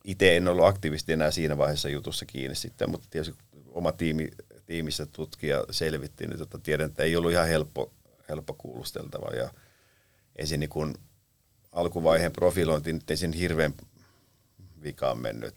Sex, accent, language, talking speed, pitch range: male, native, Finnish, 135 wpm, 75-100 Hz